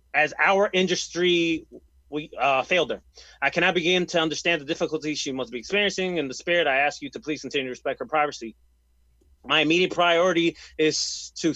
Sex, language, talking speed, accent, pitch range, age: male, English, 185 wpm, American, 140-175 Hz, 30-49